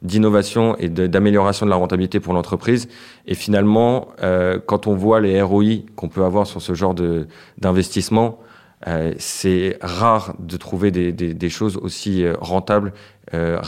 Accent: French